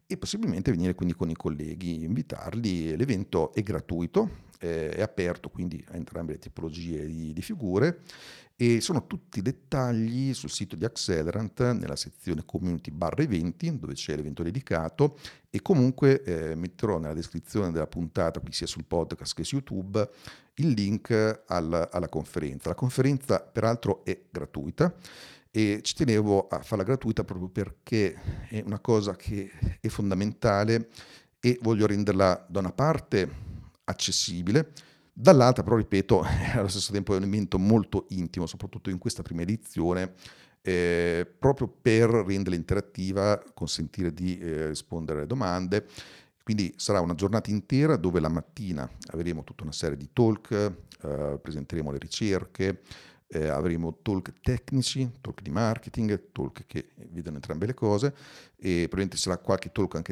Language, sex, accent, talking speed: Italian, male, native, 145 wpm